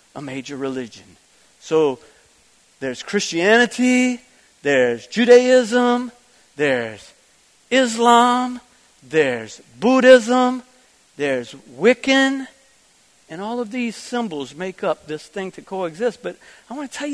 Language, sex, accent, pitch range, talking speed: English, male, American, 190-260 Hz, 105 wpm